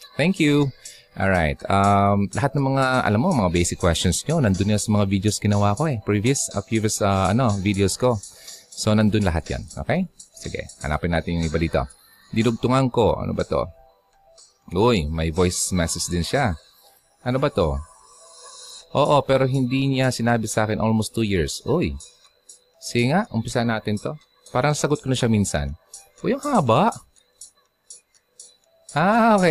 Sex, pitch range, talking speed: male, 90-120 Hz, 160 wpm